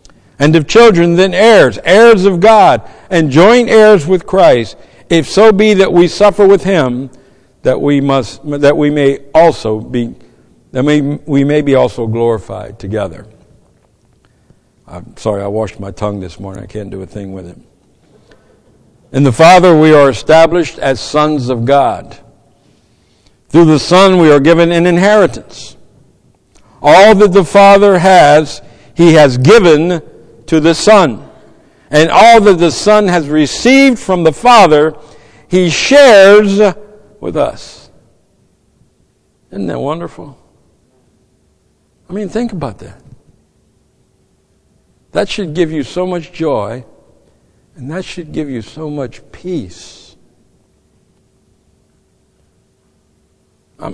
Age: 60-79